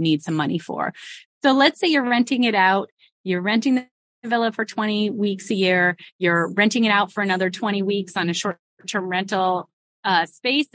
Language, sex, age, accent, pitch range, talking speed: English, female, 20-39, American, 190-245 Hz, 190 wpm